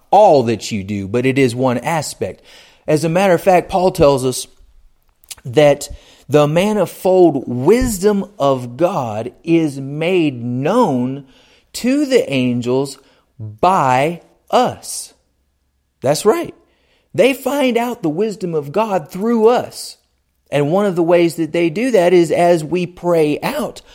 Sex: male